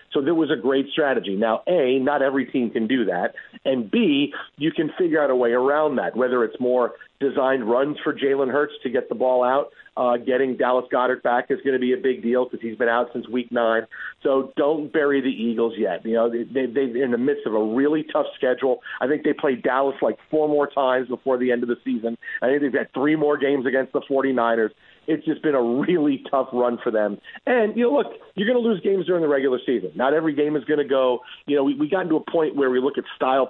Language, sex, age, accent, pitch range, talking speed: English, male, 40-59, American, 120-150 Hz, 250 wpm